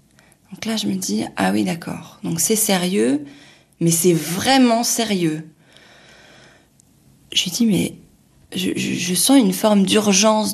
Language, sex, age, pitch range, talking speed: French, female, 20-39, 170-240 Hz, 150 wpm